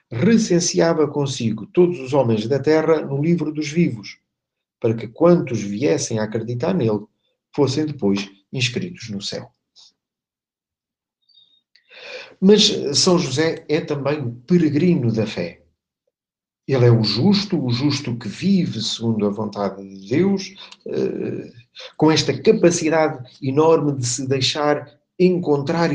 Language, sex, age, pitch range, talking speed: Portuguese, male, 50-69, 120-165 Hz, 125 wpm